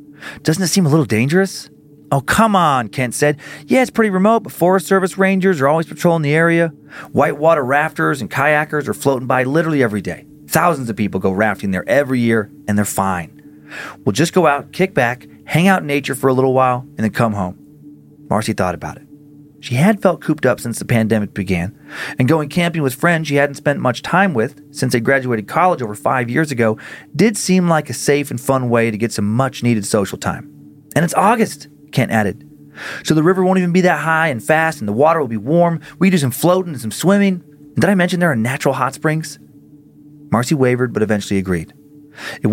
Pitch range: 115-160 Hz